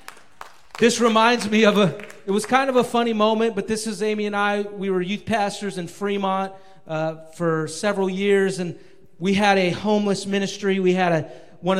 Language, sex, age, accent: English, male, 40-59, American